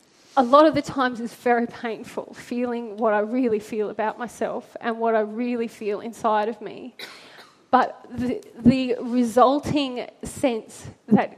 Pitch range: 220-250 Hz